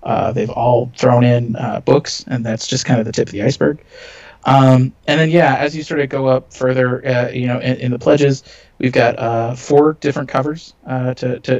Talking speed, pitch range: 230 wpm, 120-135 Hz